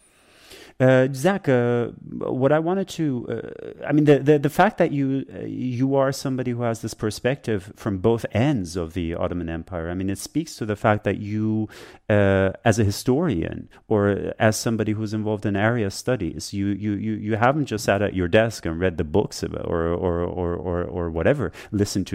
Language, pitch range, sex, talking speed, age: English, 95-120 Hz, male, 205 wpm, 30-49